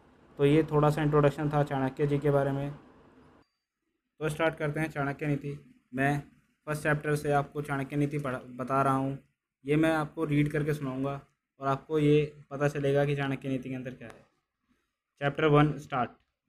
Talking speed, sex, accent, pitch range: 180 wpm, male, native, 135-145 Hz